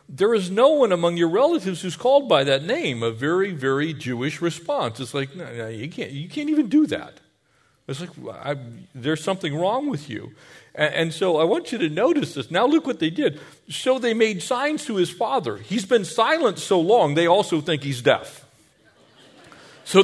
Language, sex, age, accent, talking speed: English, male, 40-59, American, 200 wpm